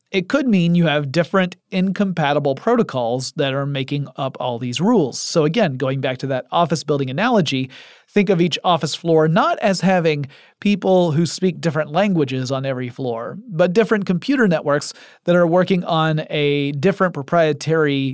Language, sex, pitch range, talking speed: English, male, 145-190 Hz, 170 wpm